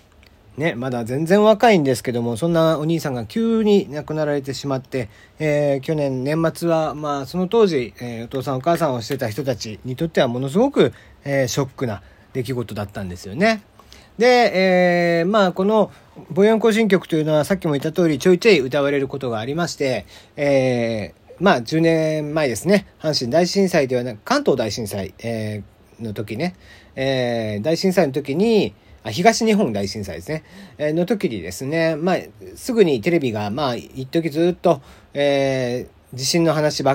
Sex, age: male, 40-59